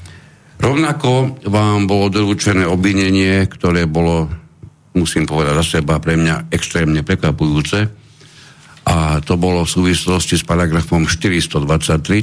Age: 60-79